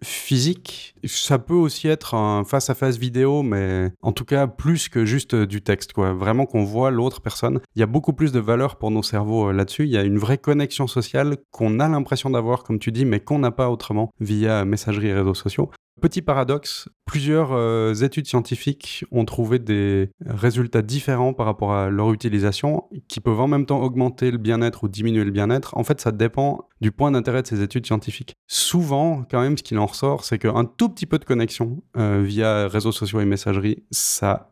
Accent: French